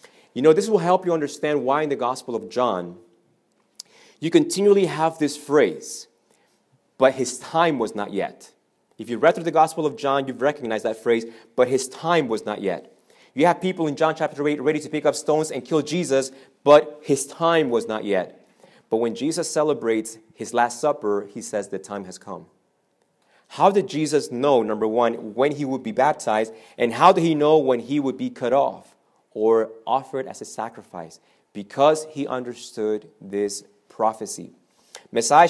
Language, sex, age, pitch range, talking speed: English, male, 30-49, 115-155 Hz, 185 wpm